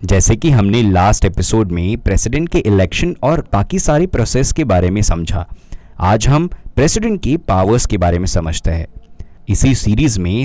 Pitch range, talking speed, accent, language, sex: 90-125 Hz, 170 wpm, native, Hindi, male